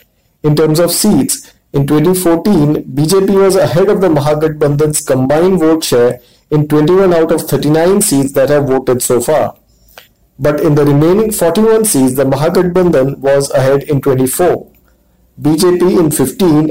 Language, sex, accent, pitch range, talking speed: English, male, Indian, 140-180 Hz, 155 wpm